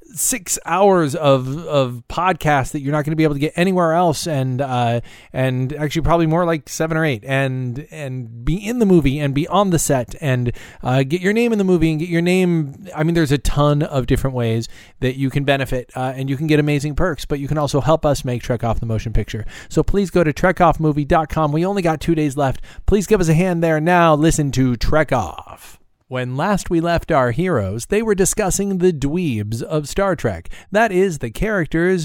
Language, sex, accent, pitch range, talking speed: English, male, American, 130-175 Hz, 225 wpm